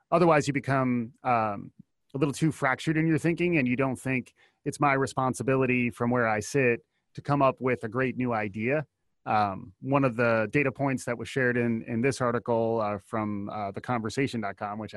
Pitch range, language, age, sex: 115-140 Hz, English, 30-49, male